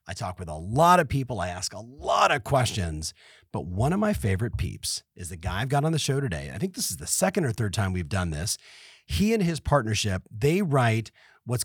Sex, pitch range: male, 110-165 Hz